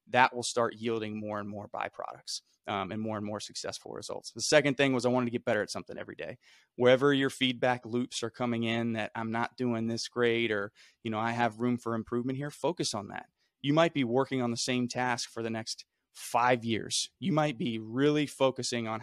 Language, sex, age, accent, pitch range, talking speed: English, male, 20-39, American, 110-130 Hz, 225 wpm